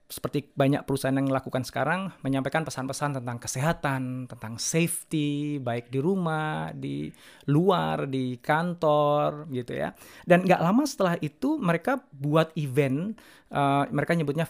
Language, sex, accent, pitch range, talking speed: Indonesian, male, native, 135-170 Hz, 135 wpm